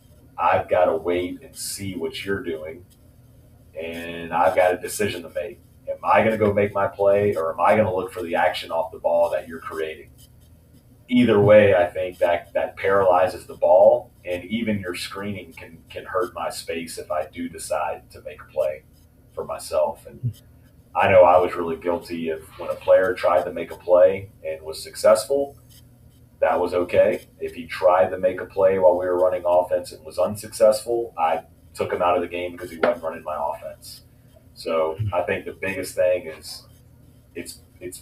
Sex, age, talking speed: male, 30-49, 200 wpm